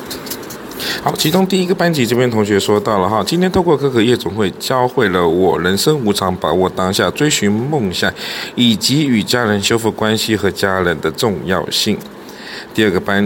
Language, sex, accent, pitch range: Chinese, male, Malaysian, 100-140 Hz